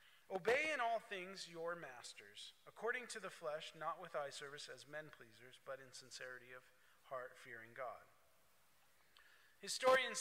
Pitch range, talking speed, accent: 165-215 Hz, 135 wpm, American